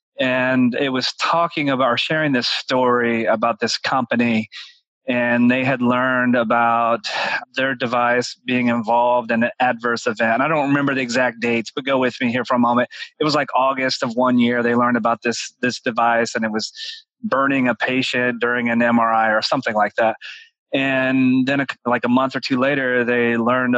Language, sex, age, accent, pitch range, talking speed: English, male, 30-49, American, 125-150 Hz, 190 wpm